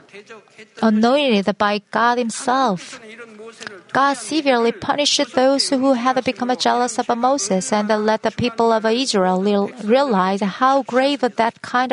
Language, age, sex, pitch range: Korean, 30-49, female, 210-250 Hz